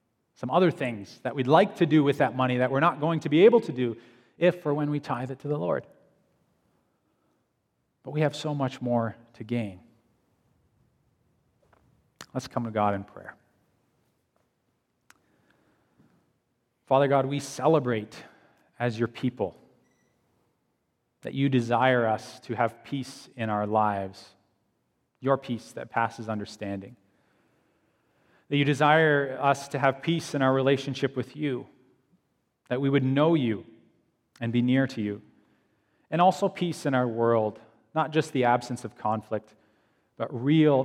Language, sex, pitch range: English, male, 115-140 Hz